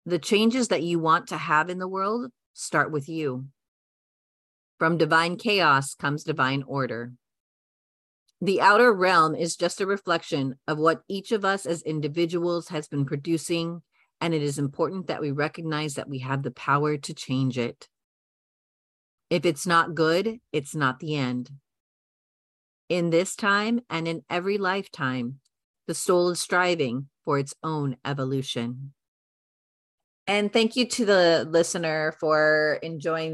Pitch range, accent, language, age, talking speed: 140-175 Hz, American, English, 40-59, 150 wpm